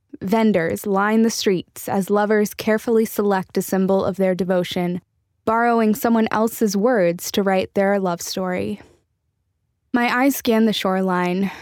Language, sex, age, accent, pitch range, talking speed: English, female, 10-29, American, 185-220 Hz, 140 wpm